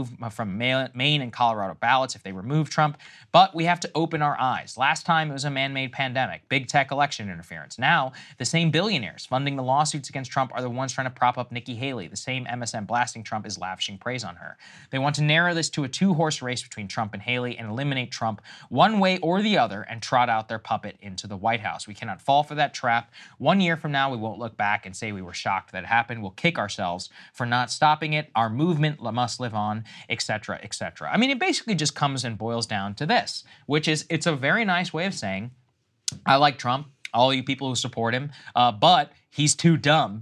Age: 20-39